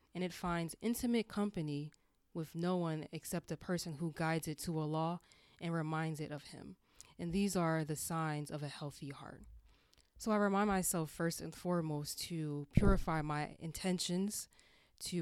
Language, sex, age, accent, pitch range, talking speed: English, female, 20-39, American, 155-180 Hz, 165 wpm